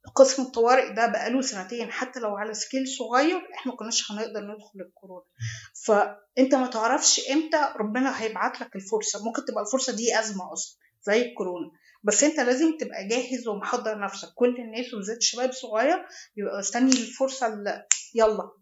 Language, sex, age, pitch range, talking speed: Arabic, female, 30-49, 210-265 Hz, 155 wpm